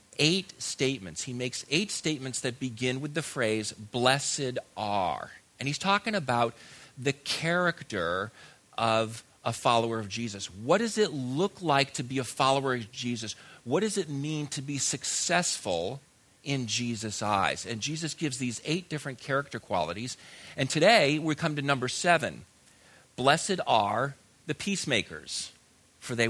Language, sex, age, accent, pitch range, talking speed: English, male, 40-59, American, 115-160 Hz, 150 wpm